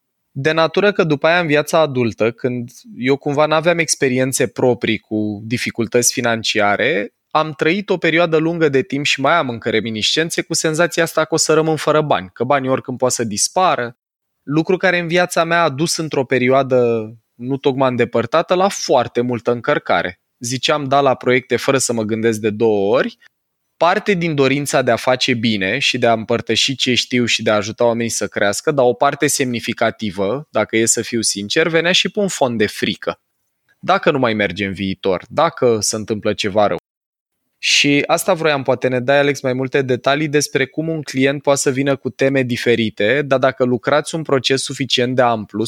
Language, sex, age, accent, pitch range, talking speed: Romanian, male, 20-39, native, 115-155 Hz, 190 wpm